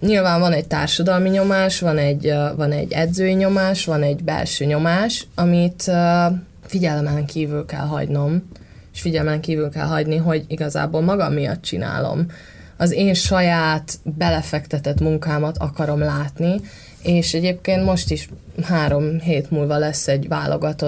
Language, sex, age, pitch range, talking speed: Hungarian, female, 20-39, 150-180 Hz, 135 wpm